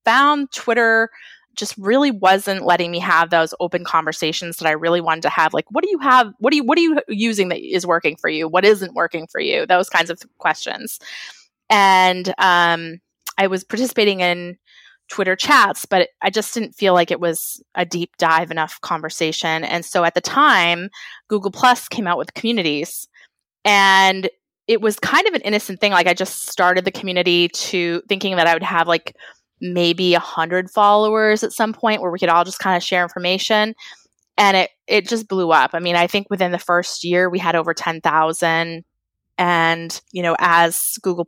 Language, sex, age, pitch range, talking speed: English, female, 20-39, 170-215 Hz, 195 wpm